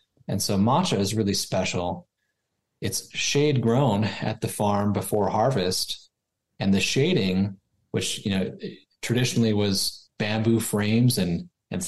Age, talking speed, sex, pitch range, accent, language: 30-49, 130 wpm, male, 100-115 Hz, American, English